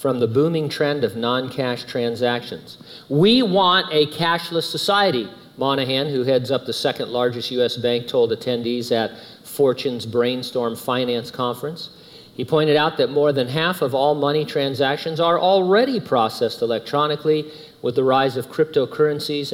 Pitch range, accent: 120-155 Hz, American